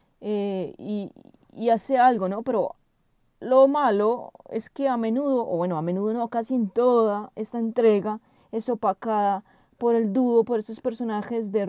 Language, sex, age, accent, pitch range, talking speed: Spanish, female, 30-49, Colombian, 215-255 Hz, 165 wpm